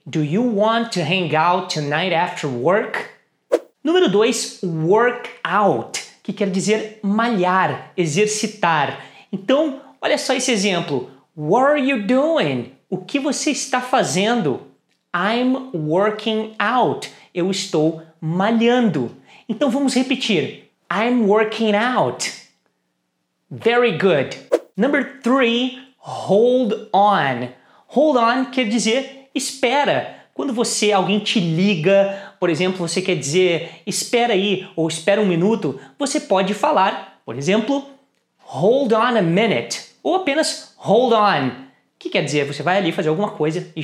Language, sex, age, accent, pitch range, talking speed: English, male, 30-49, Brazilian, 175-250 Hz, 130 wpm